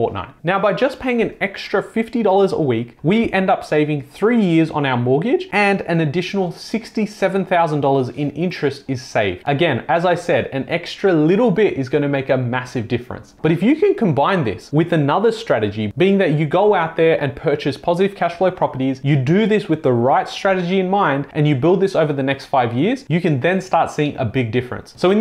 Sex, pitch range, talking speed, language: male, 135-190 Hz, 215 wpm, English